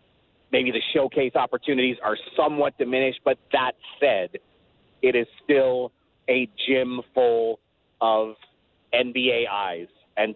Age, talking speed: 30-49, 115 wpm